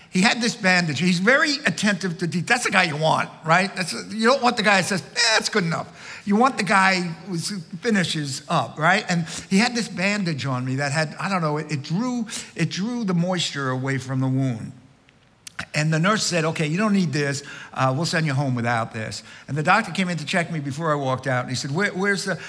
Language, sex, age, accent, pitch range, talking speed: English, male, 60-79, American, 130-185 Hz, 250 wpm